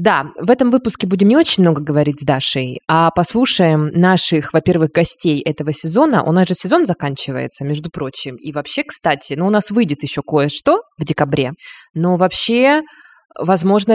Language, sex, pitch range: Russian, female, 150-195 Hz